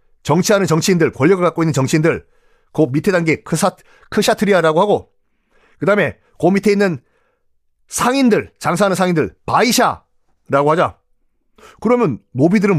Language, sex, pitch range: Korean, male, 130-200 Hz